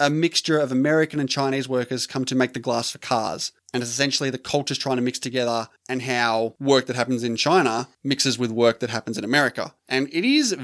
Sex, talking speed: male, 225 wpm